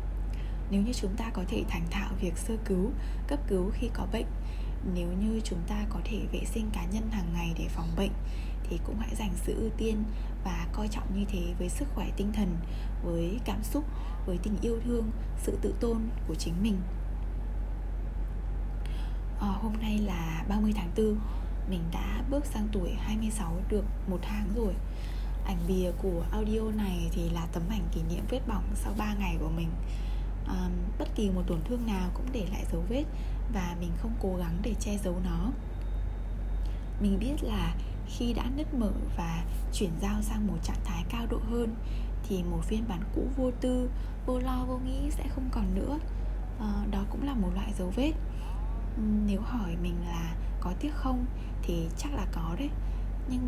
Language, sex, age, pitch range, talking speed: English, female, 10-29, 170-220 Hz, 190 wpm